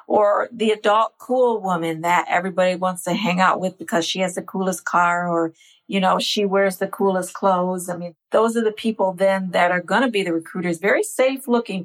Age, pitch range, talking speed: 50-69, 190-235 Hz, 220 wpm